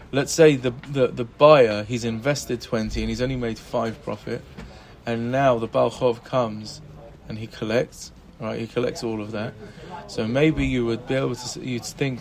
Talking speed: 185 wpm